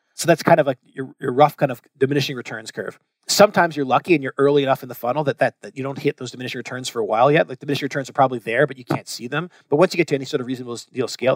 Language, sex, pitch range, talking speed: English, male, 130-150 Hz, 300 wpm